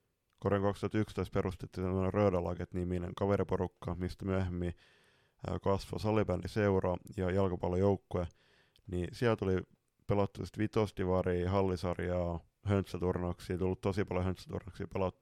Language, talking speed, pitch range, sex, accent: Finnish, 95 wpm, 95-105 Hz, male, native